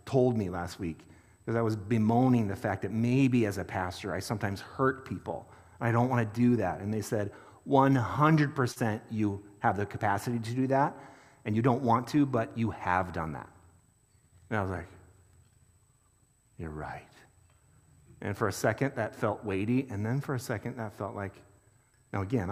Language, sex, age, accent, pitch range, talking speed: English, male, 40-59, American, 100-130 Hz, 185 wpm